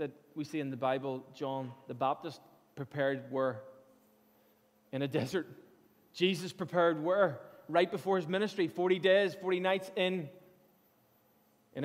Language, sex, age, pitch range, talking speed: English, male, 20-39, 180-220 Hz, 130 wpm